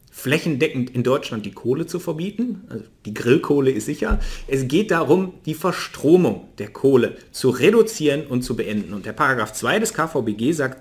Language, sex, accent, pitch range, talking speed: German, male, German, 115-165 Hz, 170 wpm